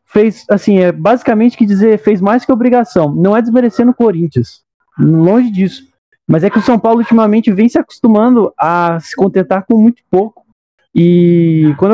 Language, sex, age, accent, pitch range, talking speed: Portuguese, male, 20-39, Brazilian, 175-230 Hz, 175 wpm